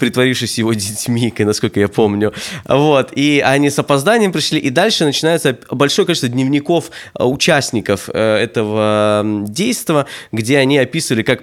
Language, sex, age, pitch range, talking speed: Russian, male, 20-39, 115-145 Hz, 125 wpm